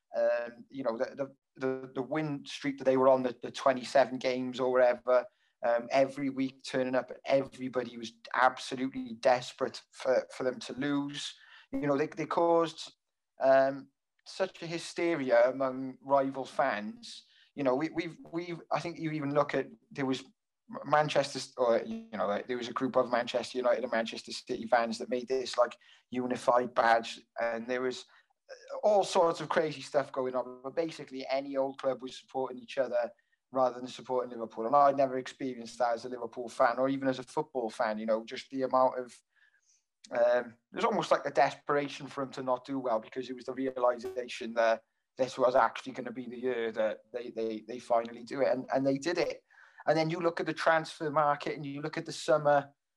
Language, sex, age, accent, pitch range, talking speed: English, male, 20-39, British, 125-150 Hz, 200 wpm